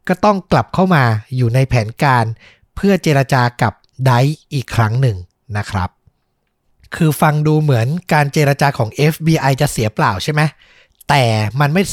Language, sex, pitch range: Thai, male, 120-160 Hz